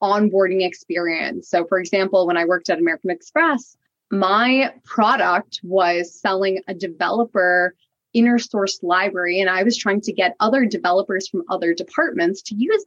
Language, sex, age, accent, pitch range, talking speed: English, female, 20-39, American, 190-245 Hz, 155 wpm